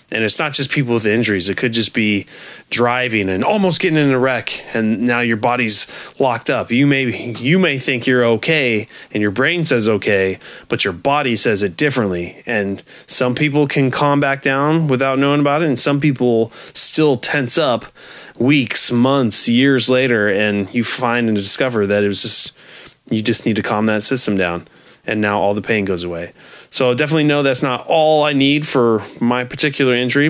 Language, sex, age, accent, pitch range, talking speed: English, male, 30-49, American, 105-135 Hz, 195 wpm